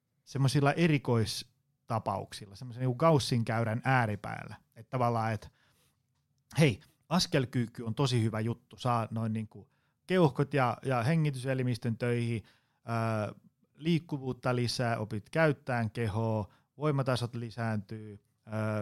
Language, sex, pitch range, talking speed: Finnish, male, 115-140 Hz, 100 wpm